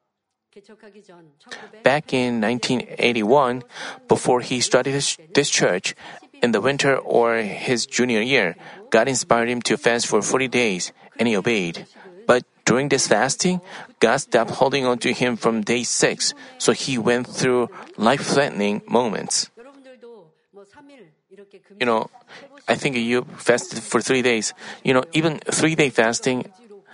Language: Korean